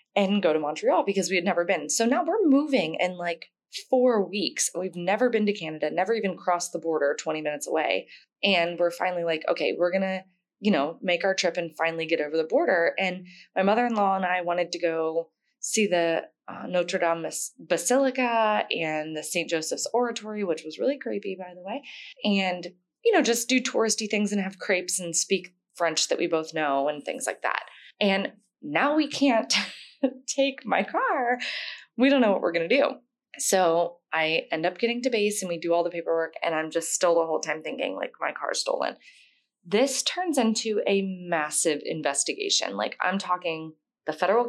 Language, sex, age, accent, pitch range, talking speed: English, female, 20-39, American, 170-235 Hz, 200 wpm